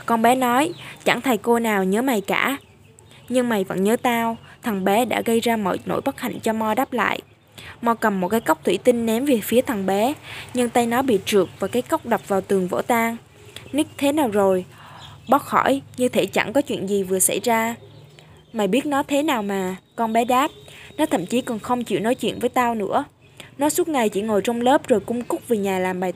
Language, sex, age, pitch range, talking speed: Vietnamese, female, 20-39, 195-255 Hz, 235 wpm